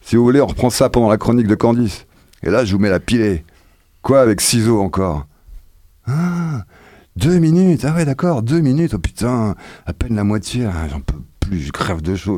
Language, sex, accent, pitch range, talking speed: French, male, French, 95-155 Hz, 215 wpm